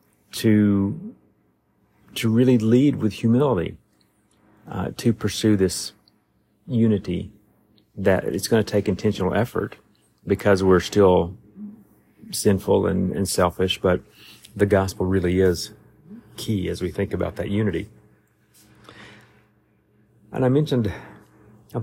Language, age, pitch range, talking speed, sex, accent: English, 40-59, 95-110 Hz, 115 wpm, male, American